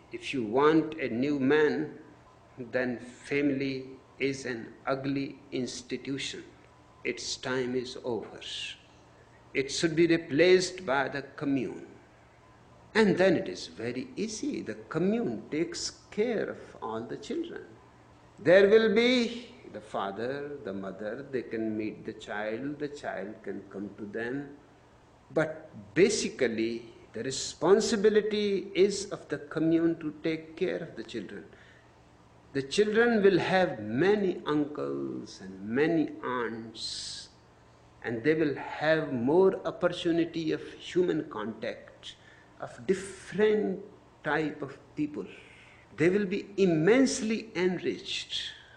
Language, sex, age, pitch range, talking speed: Persian, male, 60-79, 125-200 Hz, 120 wpm